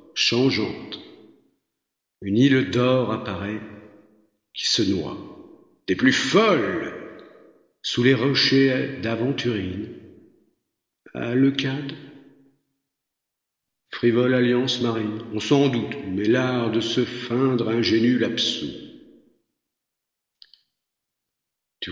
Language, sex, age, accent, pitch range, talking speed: English, male, 50-69, French, 110-155 Hz, 90 wpm